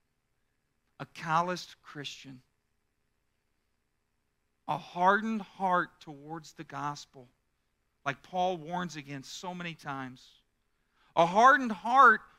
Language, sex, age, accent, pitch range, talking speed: English, male, 40-59, American, 160-260 Hz, 90 wpm